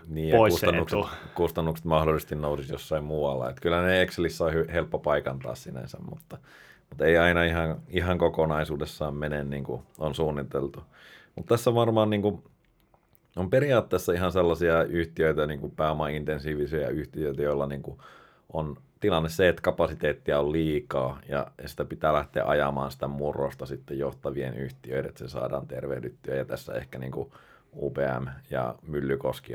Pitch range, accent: 70-85 Hz, native